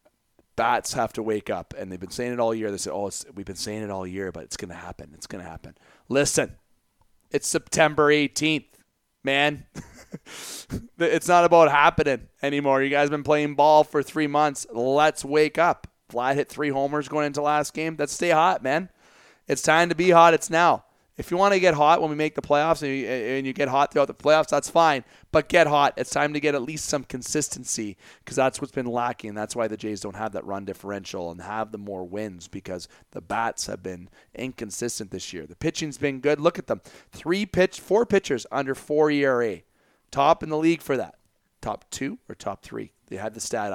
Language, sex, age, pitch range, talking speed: English, male, 30-49, 115-155 Hz, 220 wpm